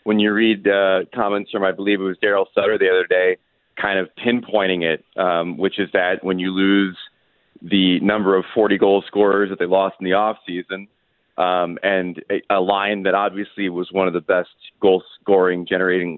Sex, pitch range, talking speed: male, 95-110 Hz, 195 wpm